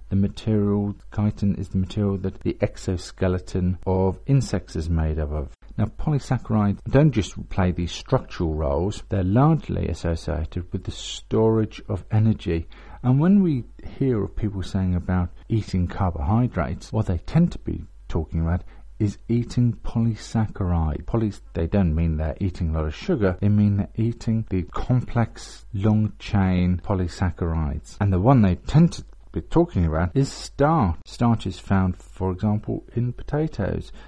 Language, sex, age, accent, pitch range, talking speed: English, male, 50-69, British, 90-115 Hz, 155 wpm